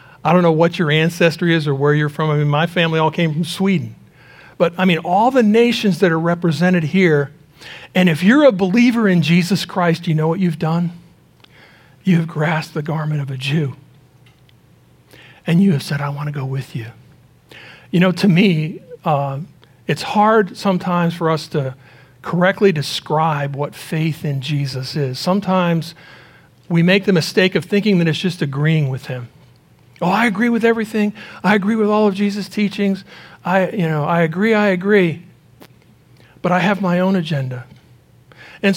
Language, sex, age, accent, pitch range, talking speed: English, male, 50-69, American, 145-195 Hz, 180 wpm